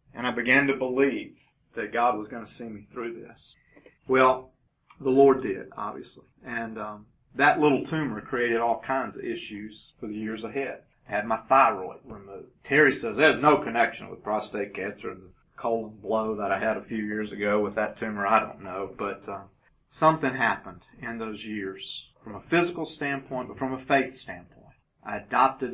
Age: 40-59